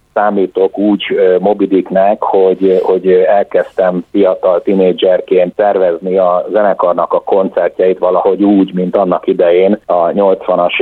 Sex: male